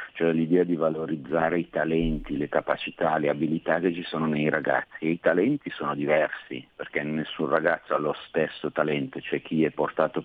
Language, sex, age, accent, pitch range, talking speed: Italian, male, 50-69, native, 80-85 Hz, 190 wpm